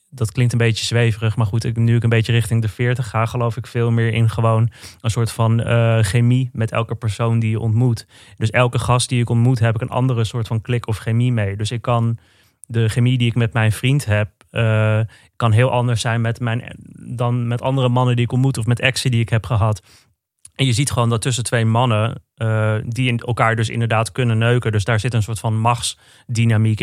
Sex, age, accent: male, 20-39, Dutch